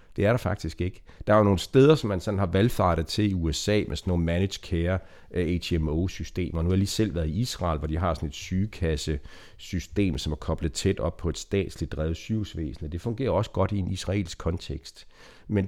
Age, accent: 60-79, native